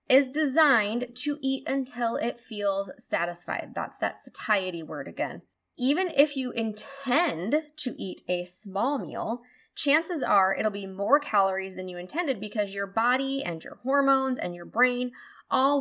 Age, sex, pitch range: 20-39, female, 190-270 Hz